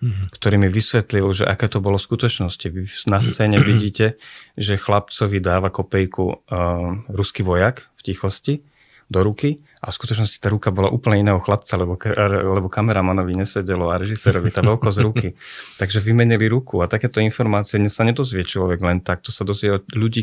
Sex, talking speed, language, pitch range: male, 170 wpm, Slovak, 90-105 Hz